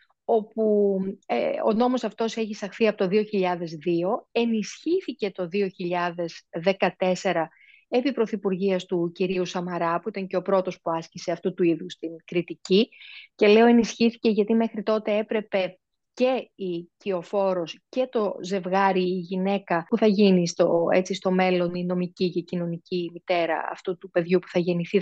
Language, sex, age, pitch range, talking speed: Greek, female, 30-49, 180-230 Hz, 150 wpm